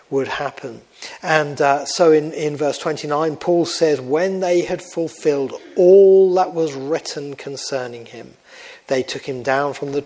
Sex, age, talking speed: male, 40-59, 160 wpm